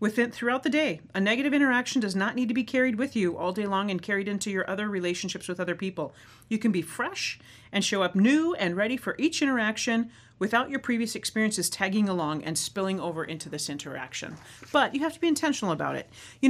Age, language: 40-59, English